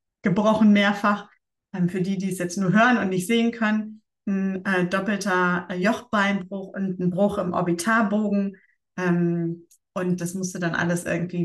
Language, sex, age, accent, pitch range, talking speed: German, female, 30-49, German, 180-215 Hz, 140 wpm